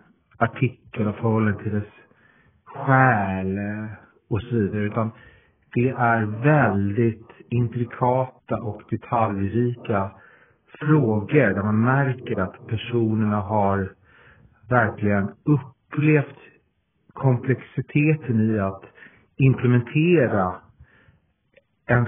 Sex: male